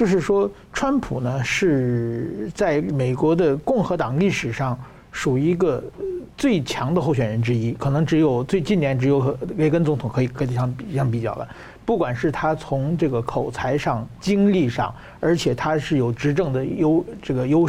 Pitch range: 130-185 Hz